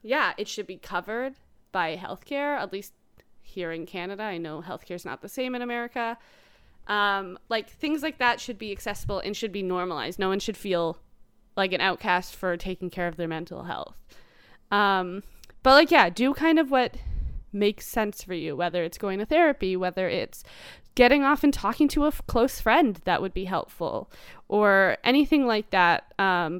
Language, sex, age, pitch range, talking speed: English, female, 20-39, 180-235 Hz, 190 wpm